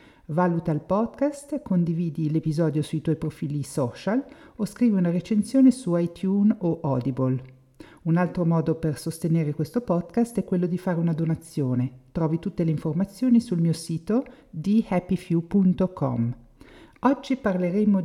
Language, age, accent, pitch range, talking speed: Italian, 50-69, native, 150-195 Hz, 135 wpm